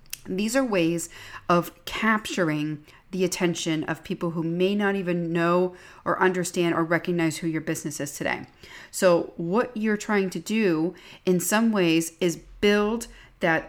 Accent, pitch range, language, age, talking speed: American, 170-195 Hz, English, 40-59, 155 wpm